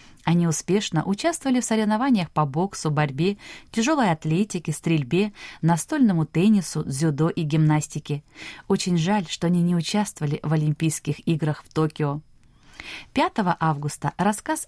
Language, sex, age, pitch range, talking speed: Russian, female, 20-39, 155-210 Hz, 125 wpm